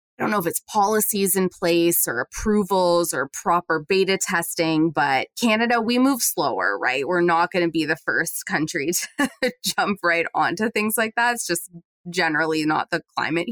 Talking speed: 180 wpm